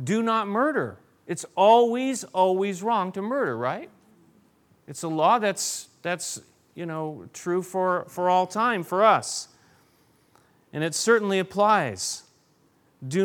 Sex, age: male, 40-59